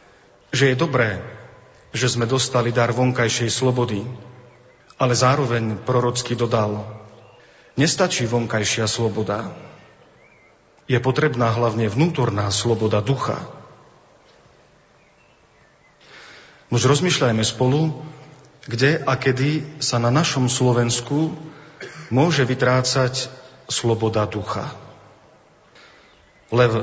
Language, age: Slovak, 40-59